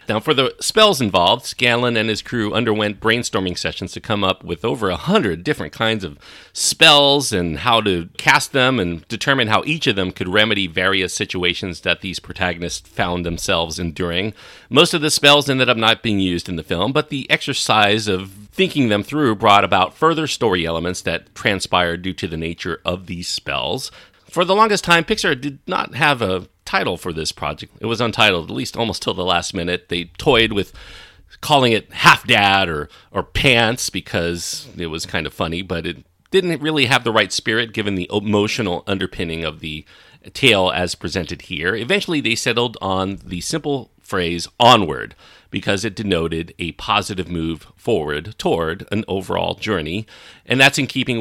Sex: male